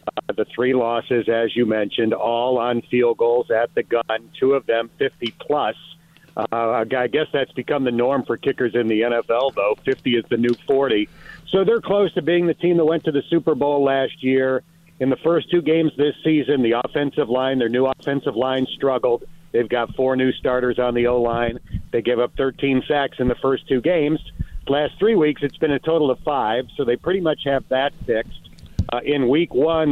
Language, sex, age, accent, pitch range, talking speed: English, male, 50-69, American, 125-155 Hz, 205 wpm